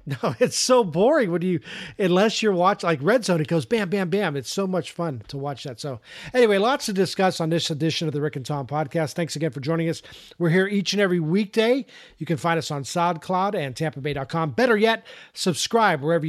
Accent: American